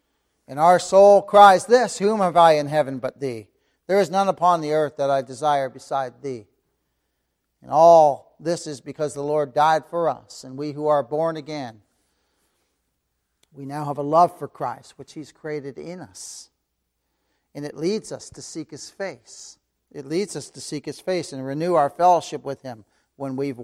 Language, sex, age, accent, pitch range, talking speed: English, male, 50-69, American, 140-175 Hz, 190 wpm